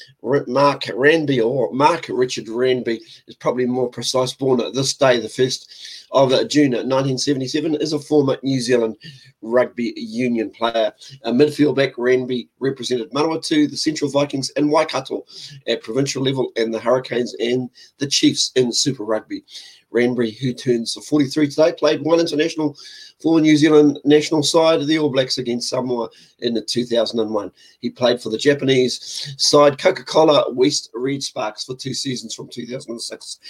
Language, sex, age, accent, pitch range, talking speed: English, male, 40-59, Australian, 125-150 Hz, 165 wpm